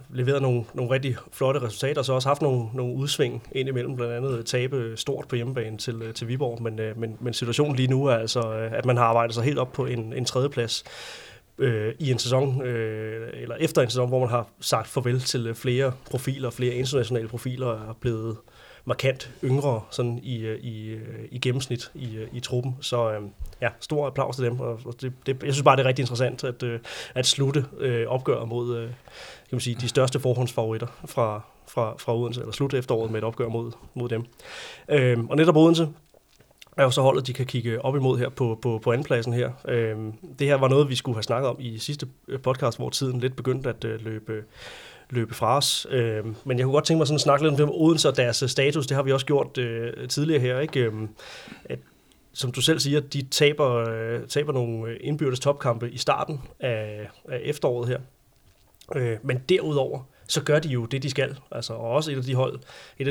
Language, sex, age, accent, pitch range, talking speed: Danish, male, 30-49, native, 115-135 Hz, 200 wpm